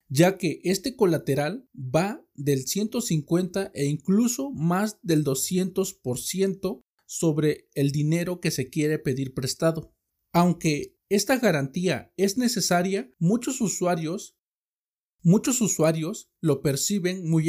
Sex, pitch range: male, 135-180 Hz